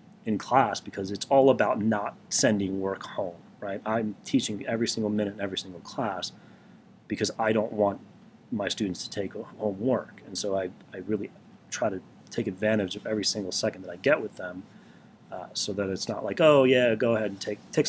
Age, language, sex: 30-49, English, male